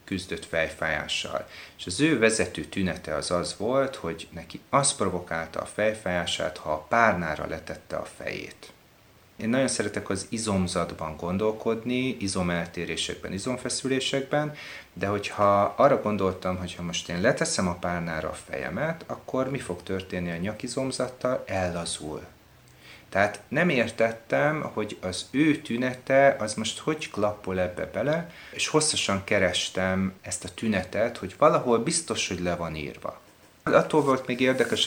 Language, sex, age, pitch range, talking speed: Hungarian, male, 30-49, 85-115 Hz, 135 wpm